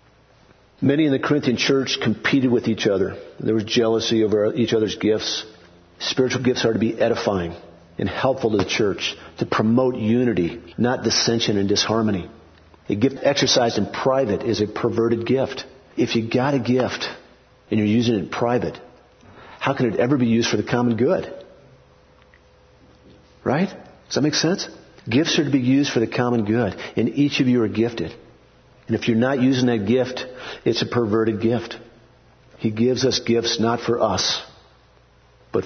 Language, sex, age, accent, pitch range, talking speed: English, male, 50-69, American, 105-125 Hz, 175 wpm